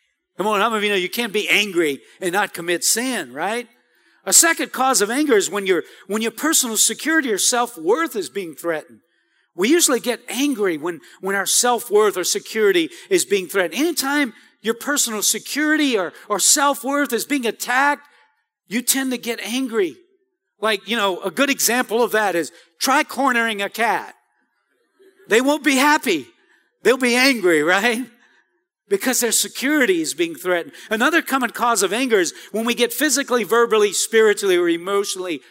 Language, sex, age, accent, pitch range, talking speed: English, male, 50-69, American, 205-305 Hz, 170 wpm